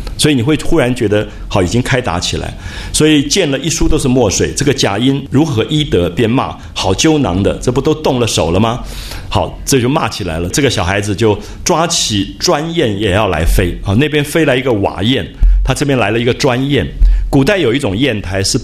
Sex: male